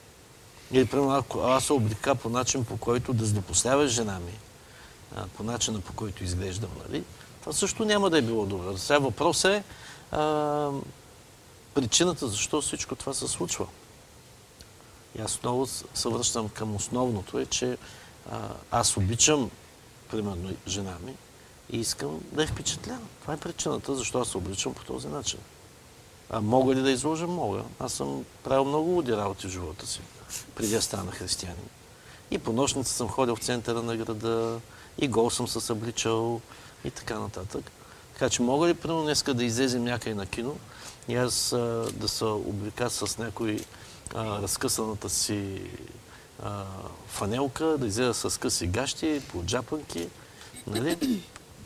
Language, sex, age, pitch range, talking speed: Bulgarian, male, 50-69, 105-135 Hz, 155 wpm